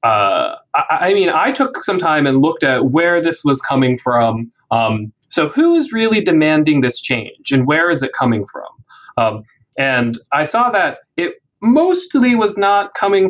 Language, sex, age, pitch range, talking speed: English, male, 20-39, 125-185 Hz, 180 wpm